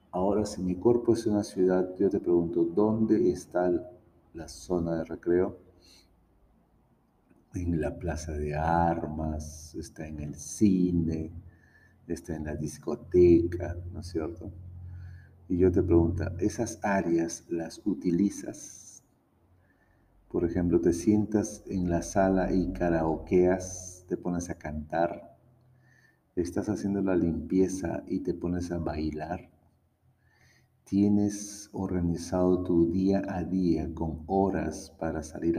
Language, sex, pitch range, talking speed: Spanish, male, 85-95 Hz, 120 wpm